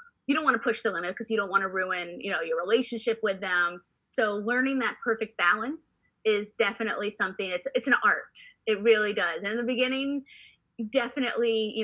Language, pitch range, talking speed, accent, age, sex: English, 195-250 Hz, 205 wpm, American, 20-39, female